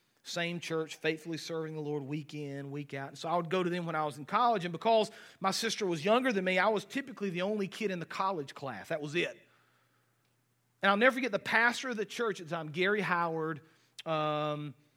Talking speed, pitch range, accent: 235 wpm, 170-220 Hz, American